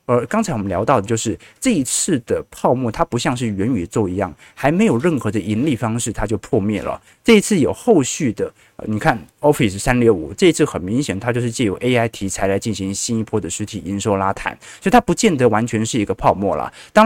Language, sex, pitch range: Chinese, male, 105-150 Hz